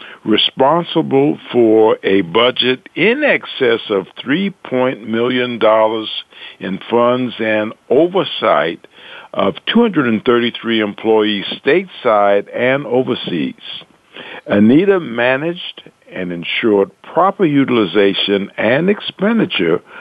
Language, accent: English, American